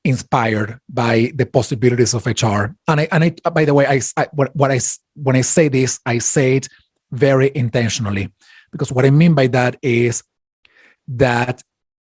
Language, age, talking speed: English, 30-49, 175 wpm